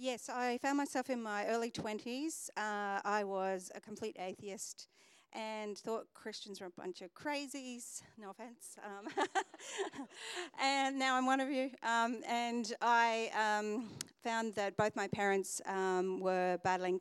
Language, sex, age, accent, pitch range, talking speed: English, female, 40-59, Australian, 185-225 Hz, 150 wpm